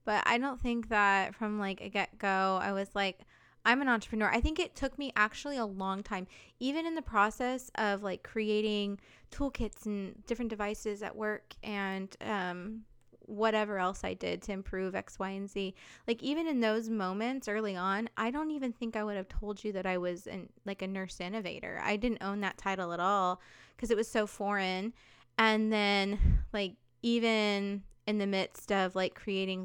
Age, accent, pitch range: 20-39, American, 185-215 Hz